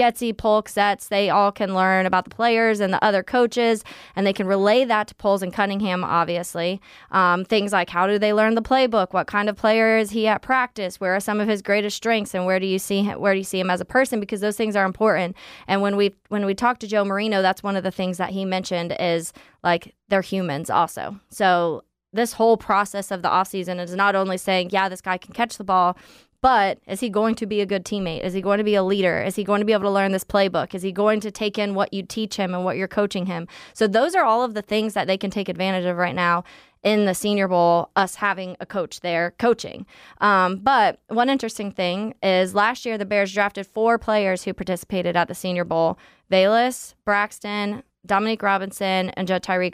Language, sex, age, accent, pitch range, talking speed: English, female, 20-39, American, 185-215 Hz, 240 wpm